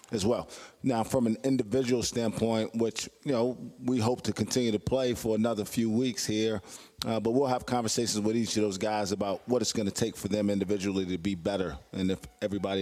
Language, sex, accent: English, male, American